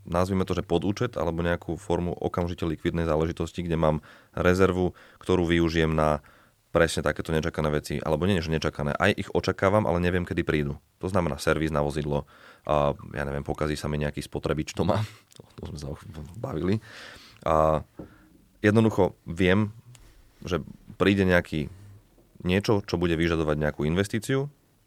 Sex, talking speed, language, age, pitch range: male, 155 wpm, Slovak, 30-49, 80-100 Hz